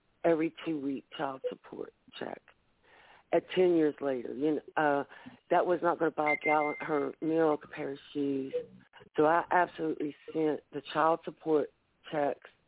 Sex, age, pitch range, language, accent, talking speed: female, 60-79, 145-160 Hz, English, American, 160 wpm